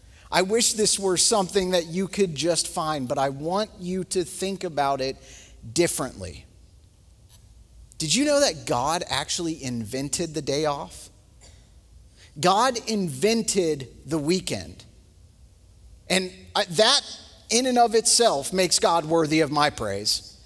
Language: English